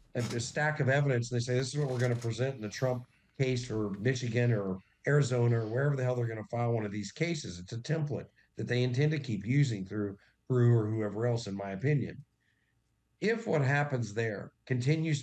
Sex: male